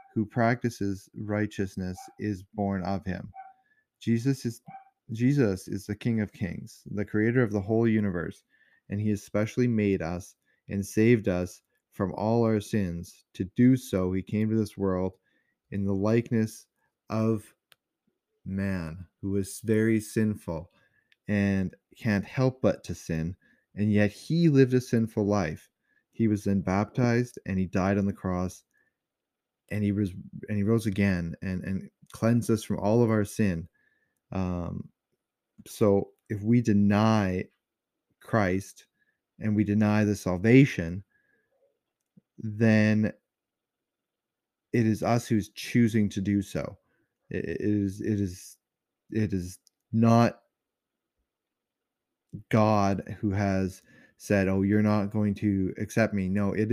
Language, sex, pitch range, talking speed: English, male, 95-115 Hz, 135 wpm